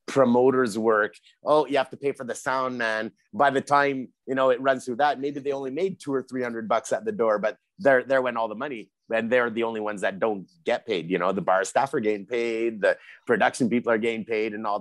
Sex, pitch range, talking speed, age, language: male, 110-140 Hz, 260 wpm, 30-49, English